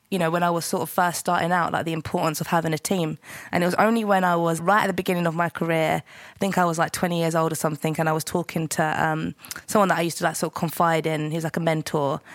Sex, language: female, English